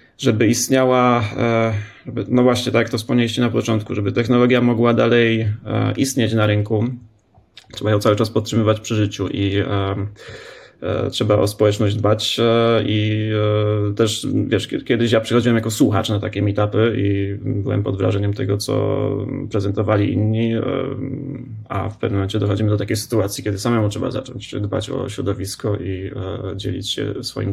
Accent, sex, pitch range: native, male, 105-125 Hz